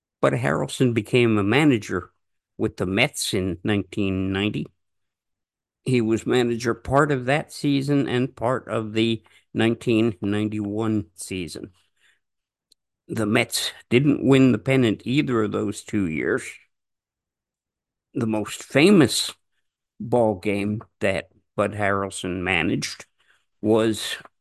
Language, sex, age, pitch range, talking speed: English, male, 50-69, 100-125 Hz, 110 wpm